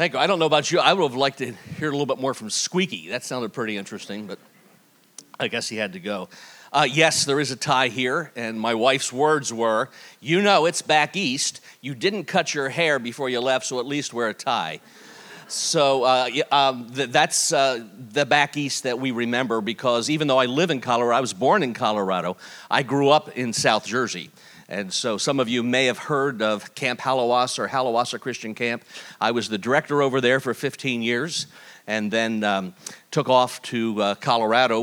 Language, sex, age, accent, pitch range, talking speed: English, male, 50-69, American, 120-150 Hz, 210 wpm